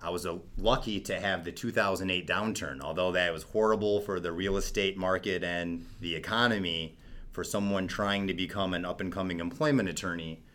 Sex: male